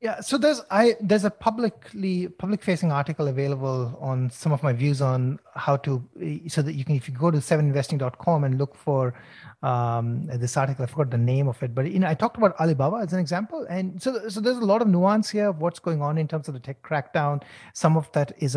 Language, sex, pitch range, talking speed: English, male, 140-185 Hz, 235 wpm